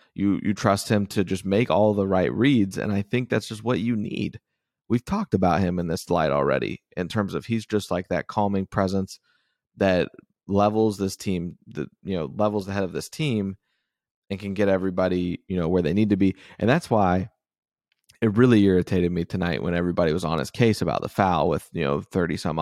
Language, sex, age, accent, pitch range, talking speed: English, male, 30-49, American, 95-110 Hz, 220 wpm